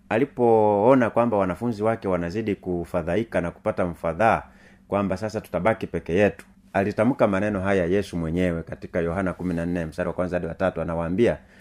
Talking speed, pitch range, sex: 145 wpm, 95-120 Hz, male